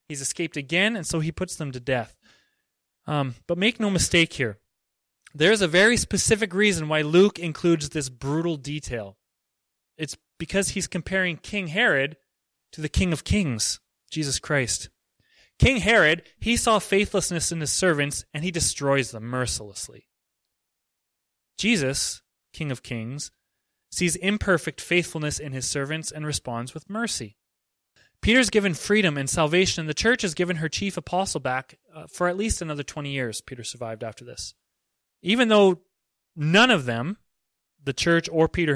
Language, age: English, 20-39